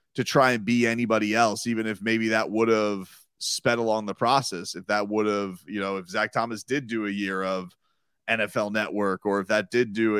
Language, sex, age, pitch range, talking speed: English, male, 30-49, 105-120 Hz, 220 wpm